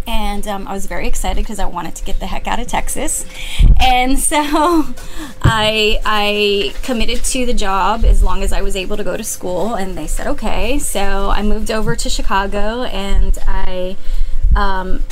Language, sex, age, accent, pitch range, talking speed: English, female, 20-39, American, 195-225 Hz, 185 wpm